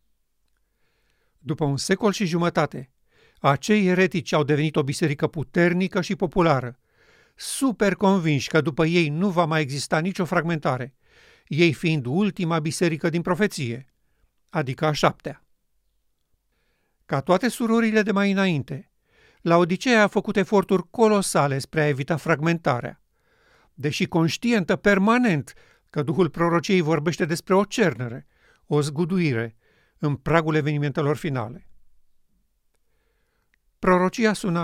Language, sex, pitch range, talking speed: Romanian, male, 150-185 Hz, 120 wpm